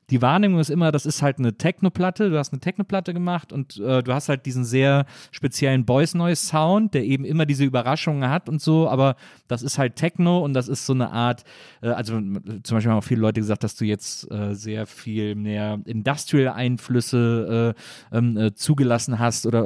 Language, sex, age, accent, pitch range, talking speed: German, male, 30-49, German, 120-155 Hz, 205 wpm